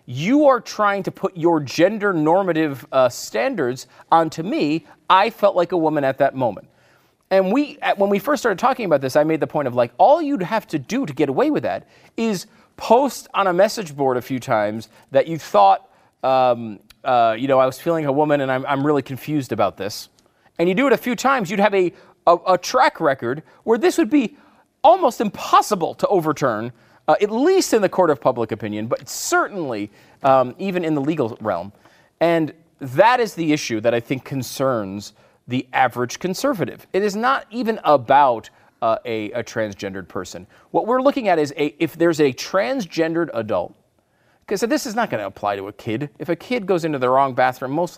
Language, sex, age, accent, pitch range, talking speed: English, male, 40-59, American, 125-195 Hz, 205 wpm